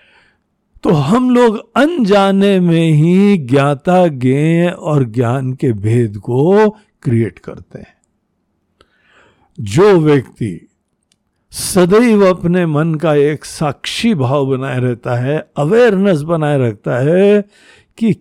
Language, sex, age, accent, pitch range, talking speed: Hindi, male, 60-79, native, 130-185 Hz, 110 wpm